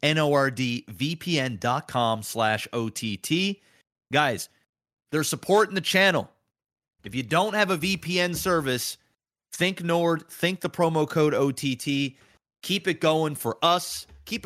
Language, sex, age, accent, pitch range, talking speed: English, male, 30-49, American, 135-180 Hz, 120 wpm